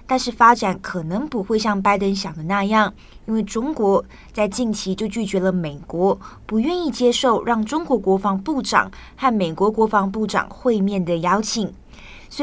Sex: female